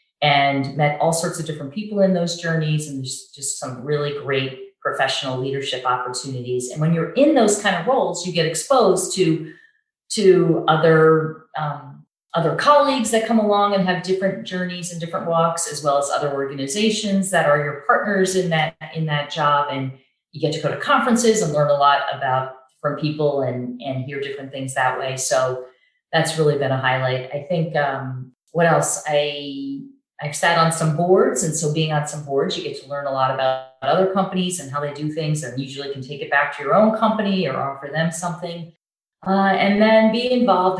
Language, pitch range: English, 145-185 Hz